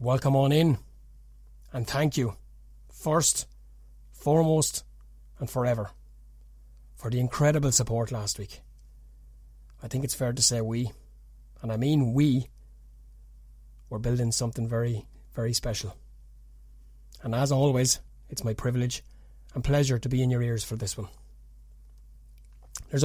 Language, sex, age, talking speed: English, male, 30-49, 130 wpm